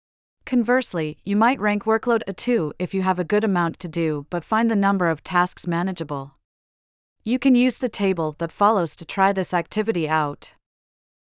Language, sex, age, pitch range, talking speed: English, female, 30-49, 160-210 Hz, 180 wpm